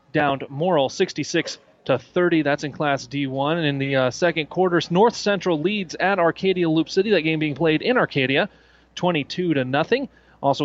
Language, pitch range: English, 145-190 Hz